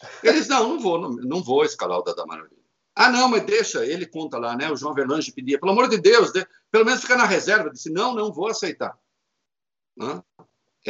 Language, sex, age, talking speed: Portuguese, male, 60-79, 225 wpm